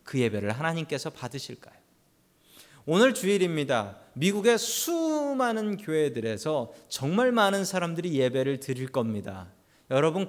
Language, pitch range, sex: Korean, 115-165 Hz, male